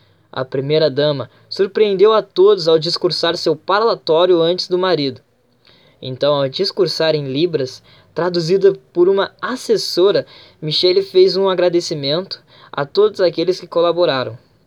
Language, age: Portuguese, 10-29